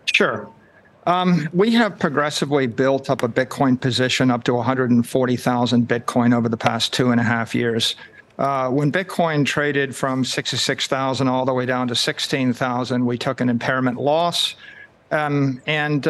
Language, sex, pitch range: English, male, 125-150 Hz